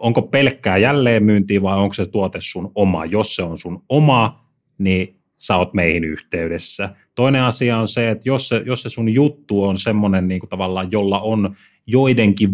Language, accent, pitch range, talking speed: Finnish, native, 90-110 Hz, 170 wpm